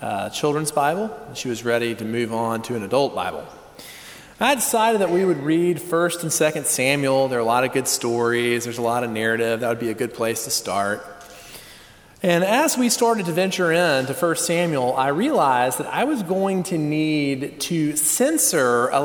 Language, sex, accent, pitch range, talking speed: English, male, American, 130-175 Hz, 205 wpm